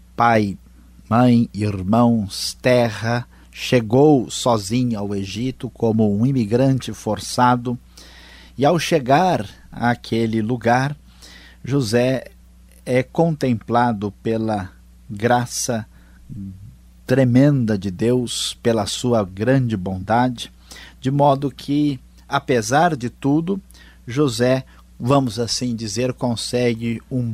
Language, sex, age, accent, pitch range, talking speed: Portuguese, male, 50-69, Brazilian, 105-130 Hz, 90 wpm